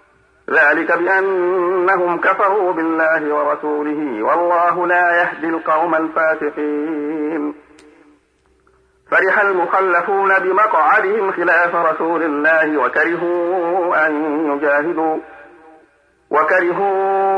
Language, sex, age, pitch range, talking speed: Arabic, male, 50-69, 155-185 Hz, 70 wpm